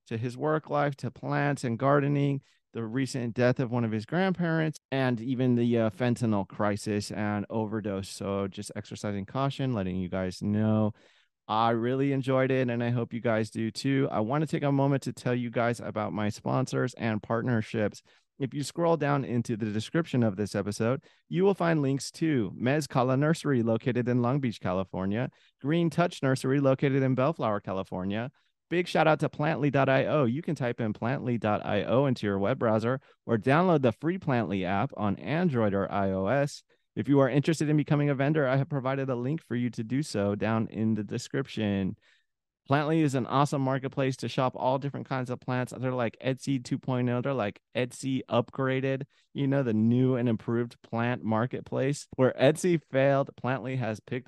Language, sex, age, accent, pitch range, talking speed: English, male, 30-49, American, 110-135 Hz, 185 wpm